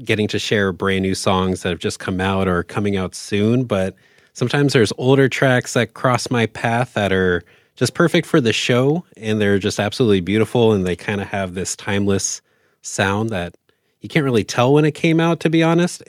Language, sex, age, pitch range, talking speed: English, male, 30-49, 105-130 Hz, 215 wpm